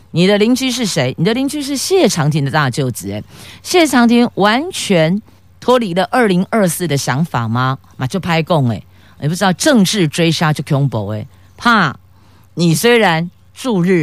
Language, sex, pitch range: Chinese, female, 135-200 Hz